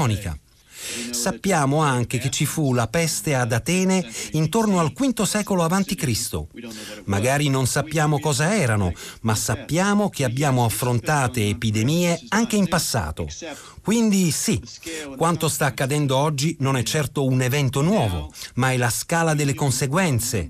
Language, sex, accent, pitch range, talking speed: Italian, male, native, 120-180 Hz, 140 wpm